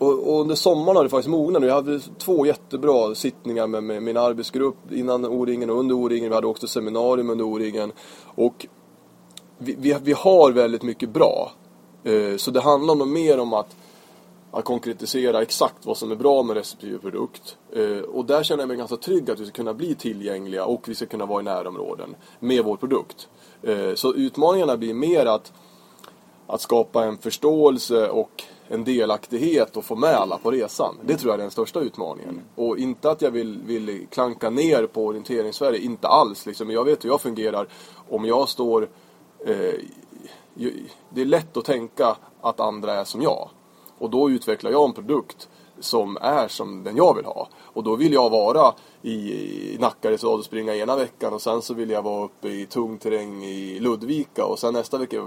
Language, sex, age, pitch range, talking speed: Swedish, male, 20-39, 110-140 Hz, 180 wpm